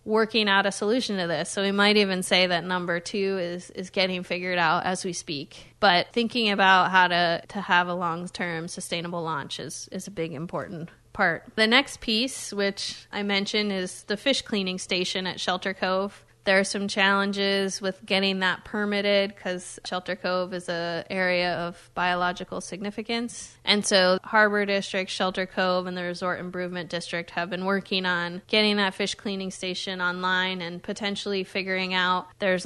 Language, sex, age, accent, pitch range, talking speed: English, female, 20-39, American, 180-200 Hz, 175 wpm